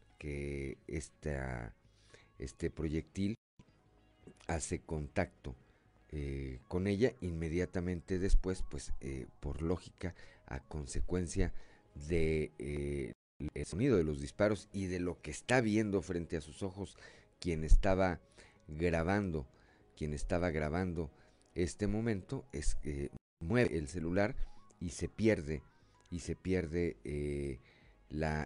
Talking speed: 110 wpm